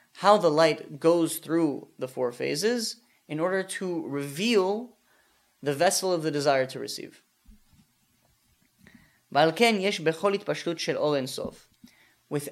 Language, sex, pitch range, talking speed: English, male, 150-205 Hz, 95 wpm